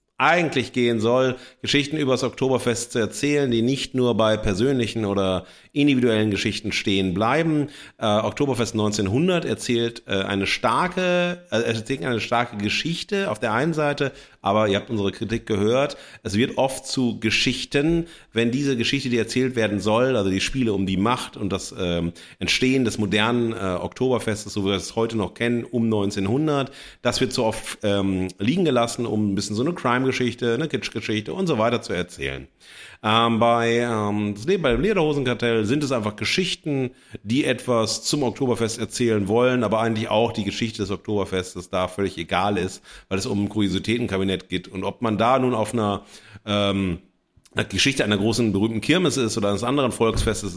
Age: 40-59